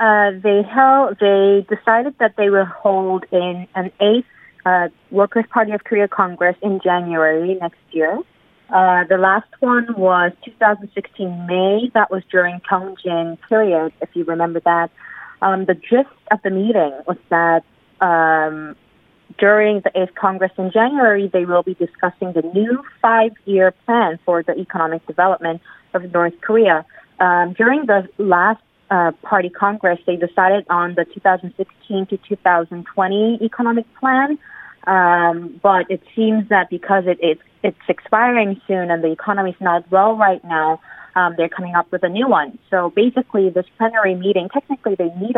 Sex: female